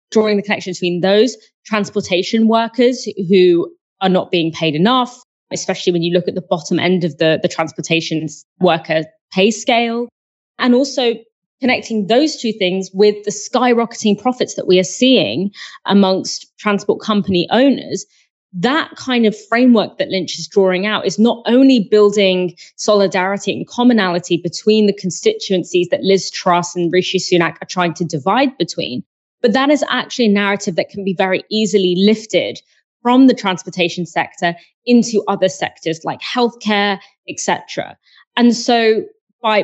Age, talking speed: 20-39, 155 wpm